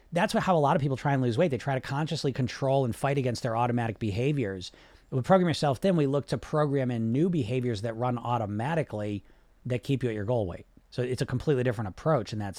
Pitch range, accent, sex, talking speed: 95-155 Hz, American, male, 245 wpm